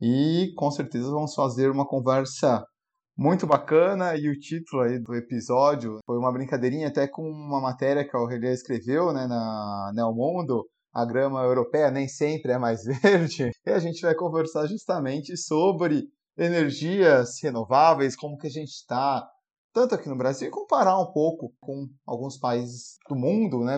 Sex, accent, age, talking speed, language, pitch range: male, Brazilian, 30-49, 165 wpm, Portuguese, 125-160 Hz